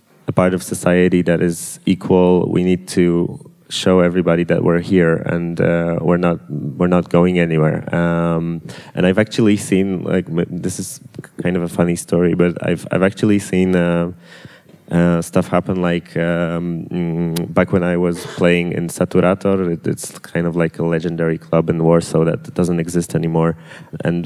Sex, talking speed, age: male, 170 wpm, 20-39